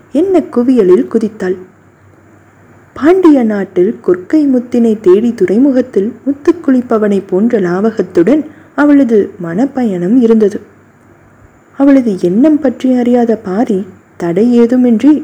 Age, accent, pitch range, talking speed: 20-39, native, 185-265 Hz, 85 wpm